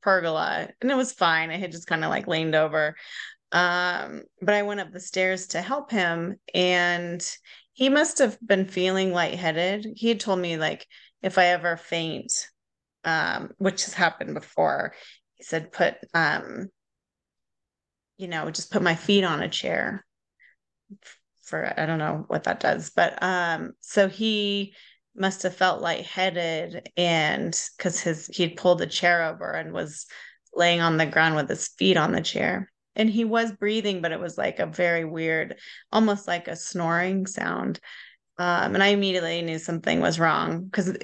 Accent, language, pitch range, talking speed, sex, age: American, English, 165-200 Hz, 170 wpm, female, 30-49